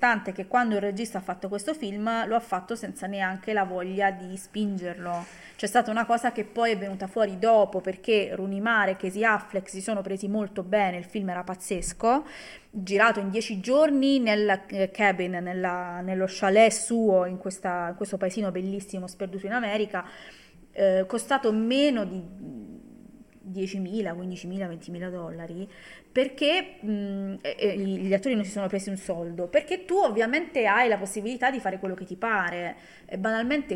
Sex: female